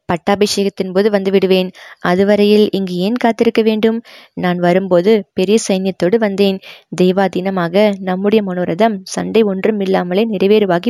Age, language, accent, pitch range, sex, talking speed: 20-39, Tamil, native, 185-210 Hz, female, 115 wpm